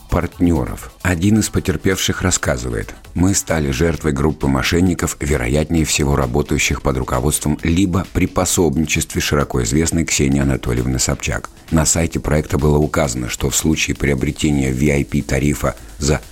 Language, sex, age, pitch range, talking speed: Russian, male, 50-69, 70-85 Hz, 120 wpm